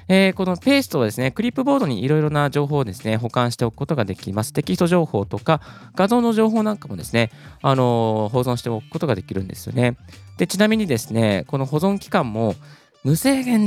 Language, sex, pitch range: Japanese, male, 110-160 Hz